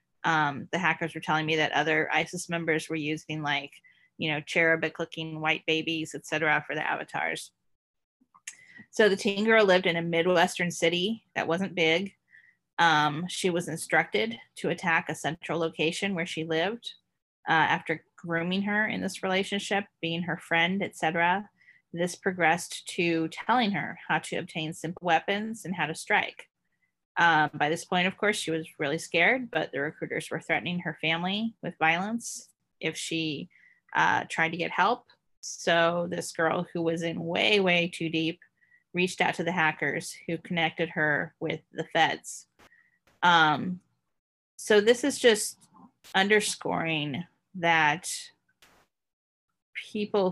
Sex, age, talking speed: female, 30-49, 150 wpm